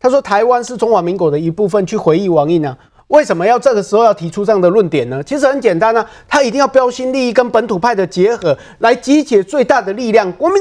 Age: 30-49